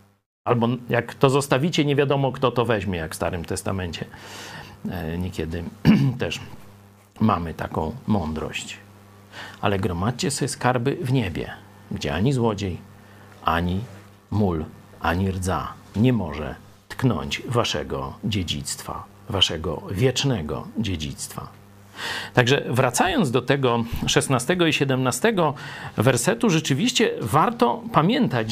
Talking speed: 105 wpm